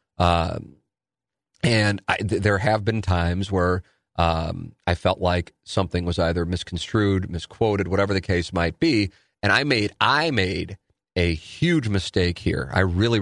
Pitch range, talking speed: 90-100 Hz, 160 wpm